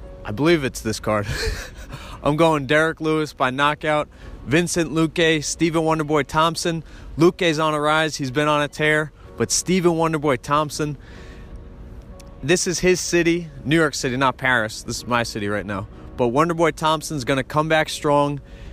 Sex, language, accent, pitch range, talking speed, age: male, English, American, 125-160 Hz, 165 wpm, 30-49